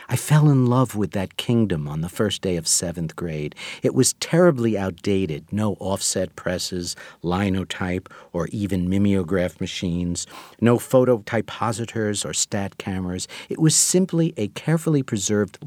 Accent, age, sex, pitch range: American, 50-69, male, 95-130 Hz